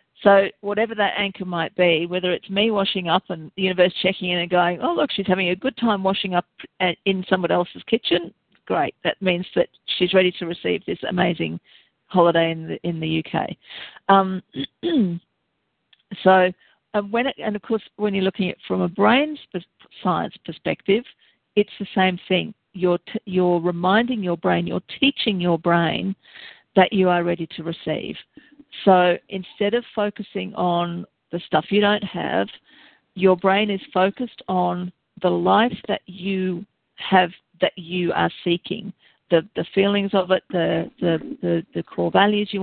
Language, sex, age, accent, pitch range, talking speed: English, female, 50-69, Australian, 175-200 Hz, 170 wpm